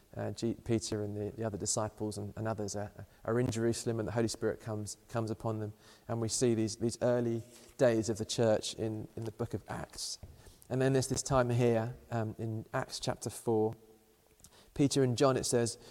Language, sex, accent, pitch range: English, male, British, 105-120 Hz